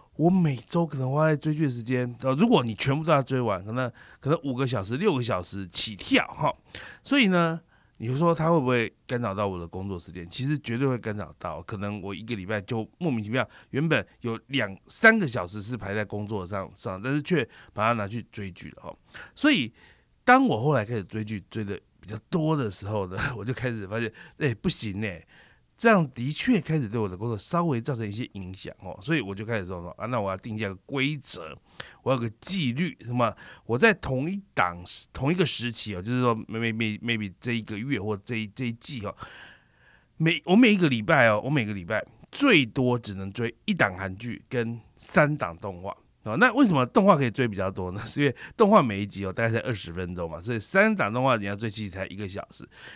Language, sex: Chinese, male